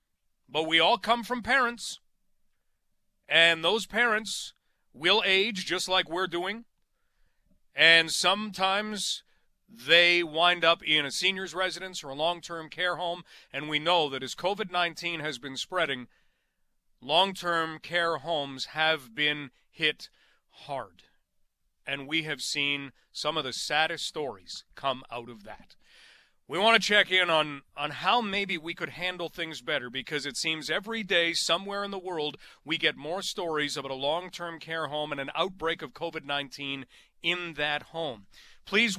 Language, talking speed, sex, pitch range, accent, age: English, 150 wpm, male, 145-180 Hz, American, 40-59